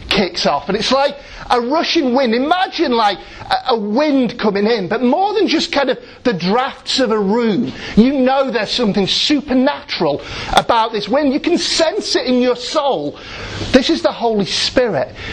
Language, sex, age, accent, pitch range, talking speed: English, male, 40-59, British, 220-320 Hz, 180 wpm